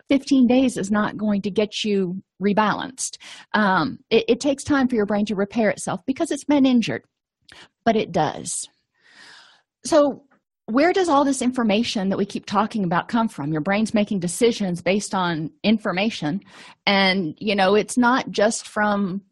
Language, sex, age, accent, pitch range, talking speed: English, female, 40-59, American, 200-245 Hz, 170 wpm